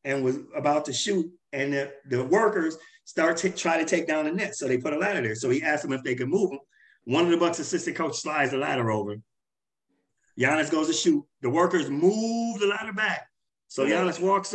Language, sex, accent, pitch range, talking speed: English, male, American, 140-190 Hz, 225 wpm